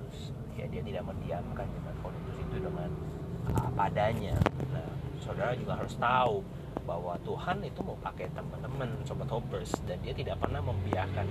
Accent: native